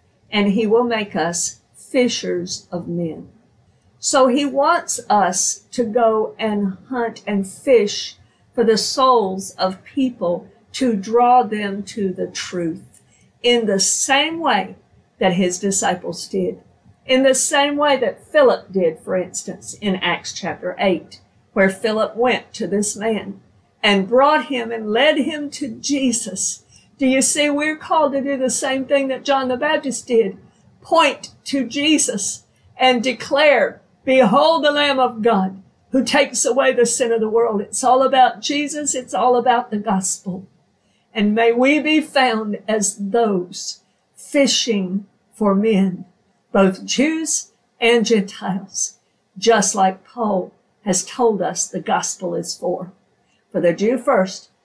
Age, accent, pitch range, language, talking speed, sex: 50-69, American, 195-265 Hz, English, 145 wpm, female